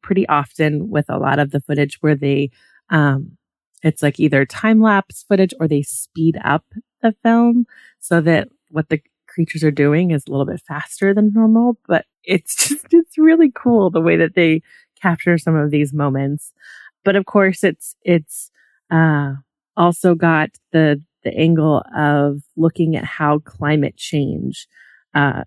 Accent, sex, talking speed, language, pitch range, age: American, female, 165 wpm, English, 145-175 Hz, 30-49